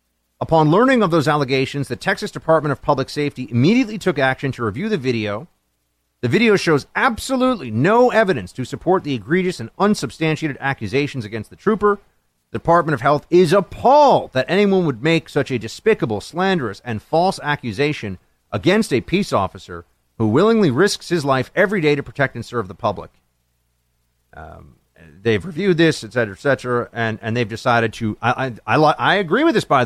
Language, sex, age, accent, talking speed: English, male, 40-59, American, 180 wpm